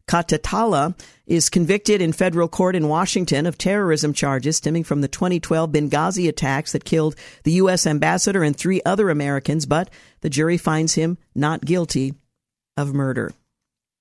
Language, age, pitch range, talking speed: English, 50-69, 155-185 Hz, 150 wpm